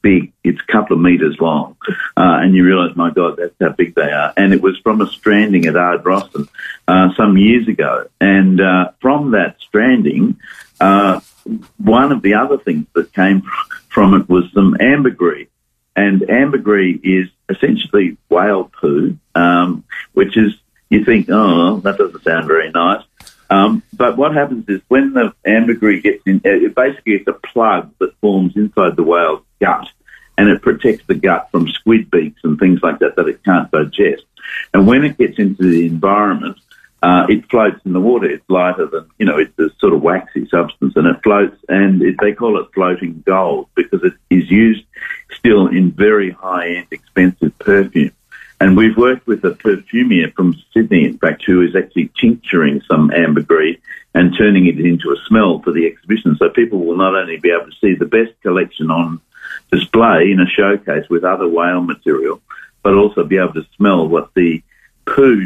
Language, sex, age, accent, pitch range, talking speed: English, male, 50-69, Australian, 90-115 Hz, 185 wpm